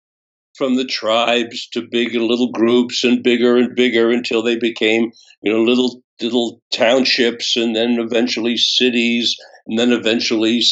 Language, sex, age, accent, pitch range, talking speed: English, male, 60-79, American, 115-135 Hz, 145 wpm